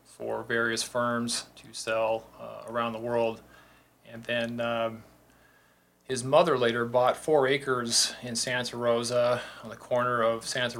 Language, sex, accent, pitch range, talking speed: English, male, American, 115-130 Hz, 145 wpm